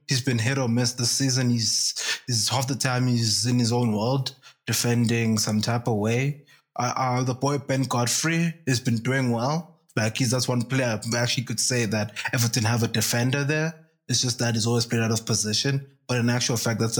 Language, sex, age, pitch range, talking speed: English, male, 20-39, 115-130 Hz, 215 wpm